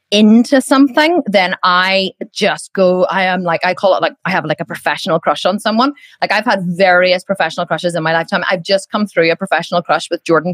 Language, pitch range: English, 180-255 Hz